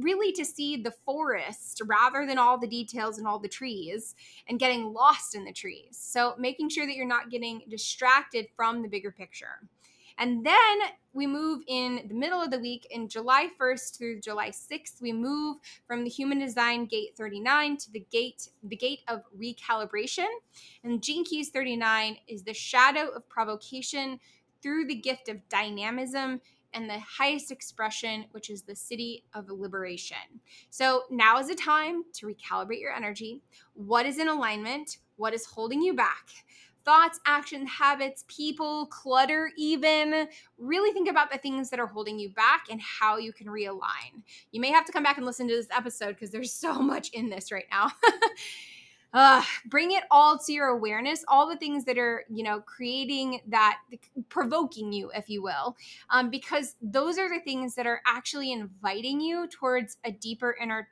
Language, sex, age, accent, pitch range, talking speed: English, female, 20-39, American, 225-290 Hz, 180 wpm